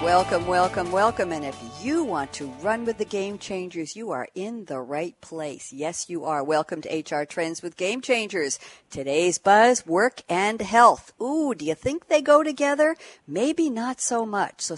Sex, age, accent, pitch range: female, 60-79, American, 165-225 Hz